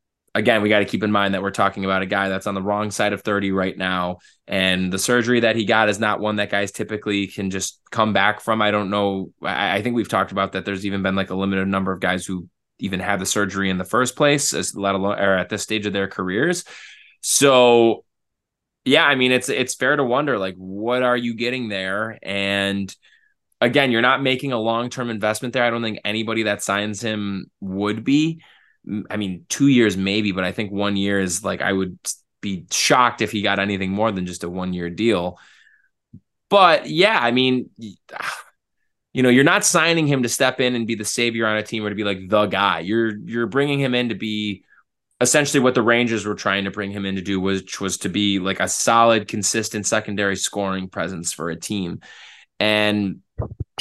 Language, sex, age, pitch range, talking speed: English, male, 20-39, 95-115 Hz, 215 wpm